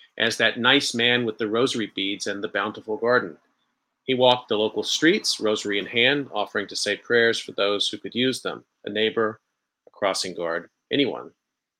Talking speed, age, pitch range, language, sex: 185 wpm, 40-59, 105-125 Hz, English, male